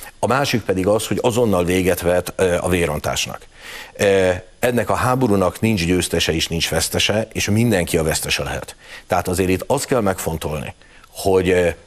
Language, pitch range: Hungarian, 85-105 Hz